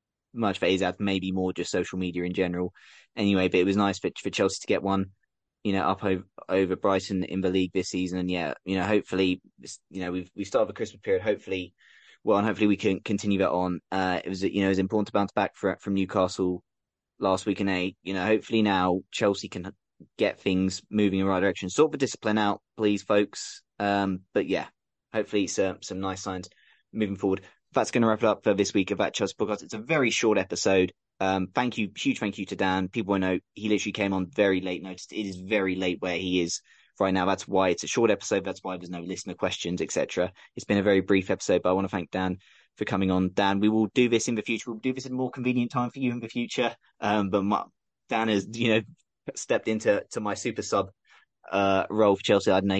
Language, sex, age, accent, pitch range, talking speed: English, male, 20-39, British, 95-105 Hz, 245 wpm